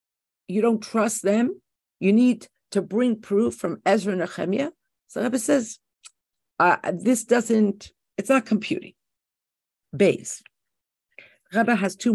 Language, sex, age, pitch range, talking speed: English, female, 50-69, 170-235 Hz, 125 wpm